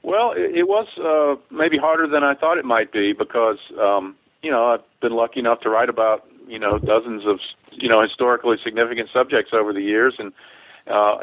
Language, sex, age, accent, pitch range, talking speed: English, male, 50-69, American, 110-130 Hz, 200 wpm